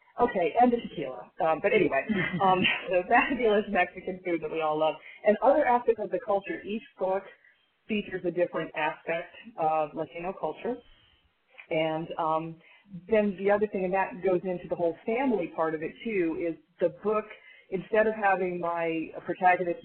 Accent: American